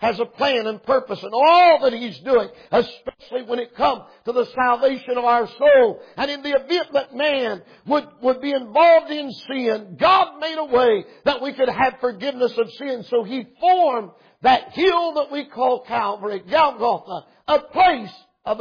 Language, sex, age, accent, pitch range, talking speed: English, male, 50-69, American, 225-275 Hz, 180 wpm